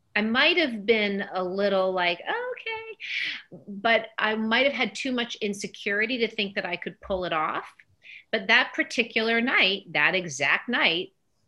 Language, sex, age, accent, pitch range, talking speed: English, female, 30-49, American, 175-235 Hz, 155 wpm